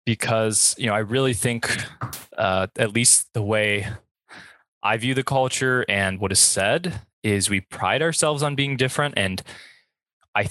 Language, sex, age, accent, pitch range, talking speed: English, male, 20-39, American, 95-125 Hz, 160 wpm